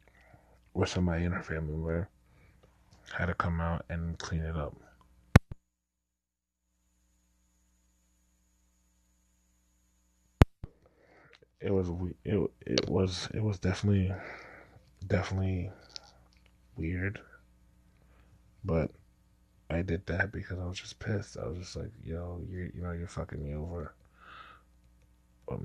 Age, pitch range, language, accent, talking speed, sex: 20-39, 65-95 Hz, English, American, 110 wpm, male